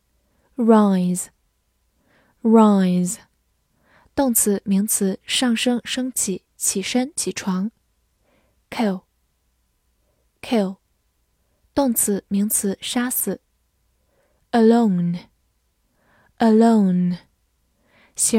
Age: 10-29